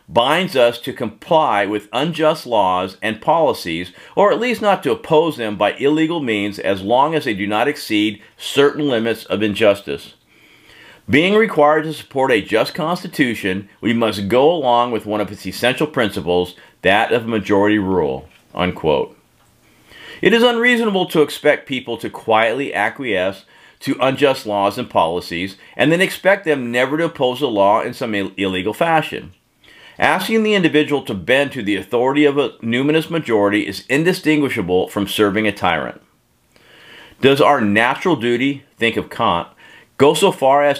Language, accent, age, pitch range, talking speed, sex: English, American, 50-69, 100-150 Hz, 160 wpm, male